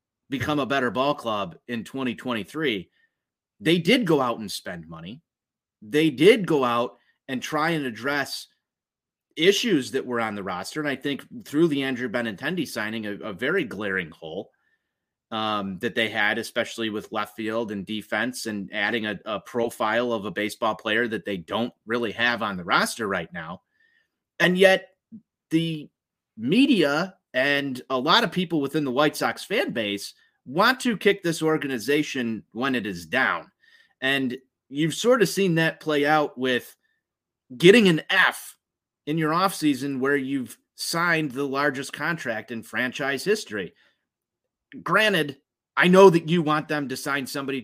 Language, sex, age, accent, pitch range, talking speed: English, male, 30-49, American, 120-175 Hz, 160 wpm